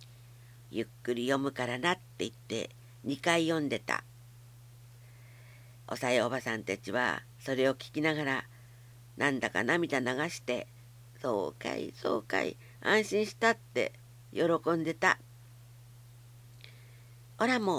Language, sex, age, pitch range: Japanese, female, 60-79, 120-150 Hz